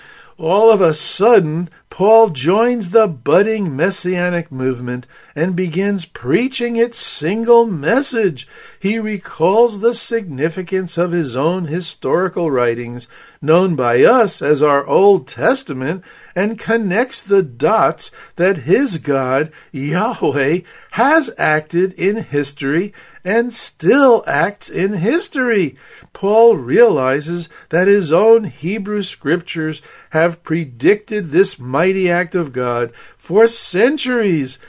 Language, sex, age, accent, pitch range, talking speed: English, male, 50-69, American, 165-220 Hz, 110 wpm